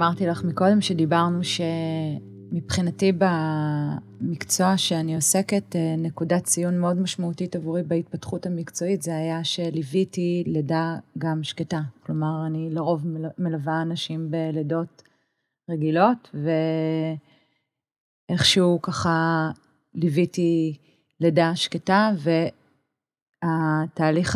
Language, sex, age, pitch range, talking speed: Hebrew, female, 30-49, 160-175 Hz, 85 wpm